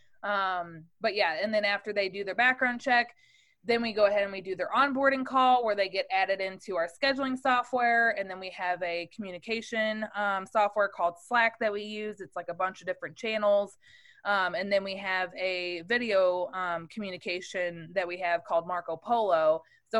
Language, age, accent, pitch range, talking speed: English, 20-39, American, 180-235 Hz, 195 wpm